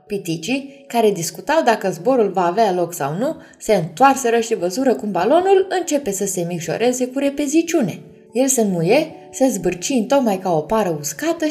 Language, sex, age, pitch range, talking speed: Romanian, female, 20-39, 170-260 Hz, 165 wpm